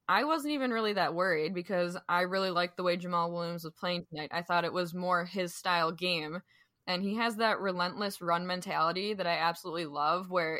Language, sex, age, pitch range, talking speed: English, female, 10-29, 170-195 Hz, 210 wpm